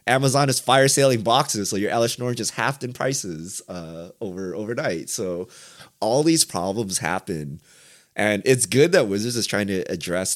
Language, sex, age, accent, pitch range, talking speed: English, male, 30-49, American, 95-125 Hz, 175 wpm